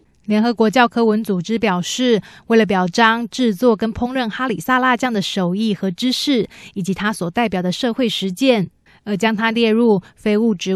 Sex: female